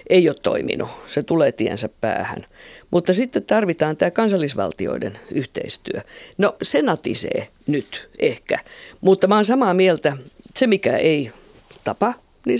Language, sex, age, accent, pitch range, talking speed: Finnish, female, 50-69, native, 150-195 Hz, 125 wpm